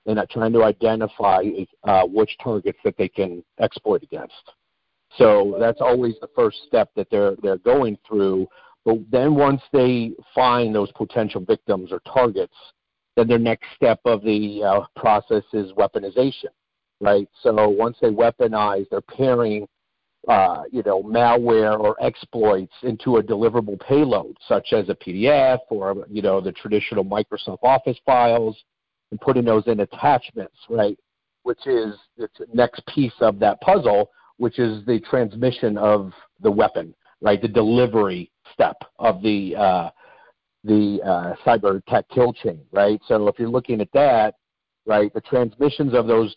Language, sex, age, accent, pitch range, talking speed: English, male, 50-69, American, 105-125 Hz, 155 wpm